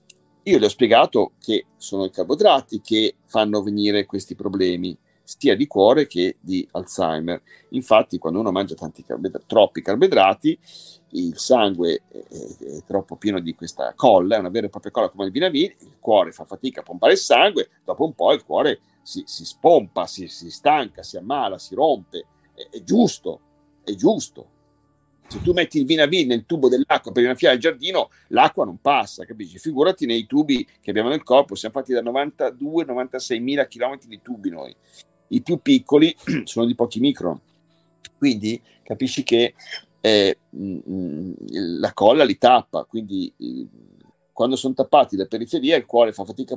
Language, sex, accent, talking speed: Italian, male, native, 165 wpm